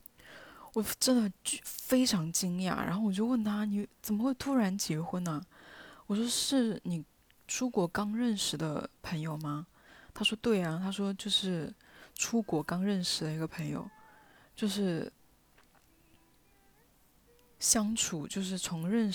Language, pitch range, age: Chinese, 170-215 Hz, 20-39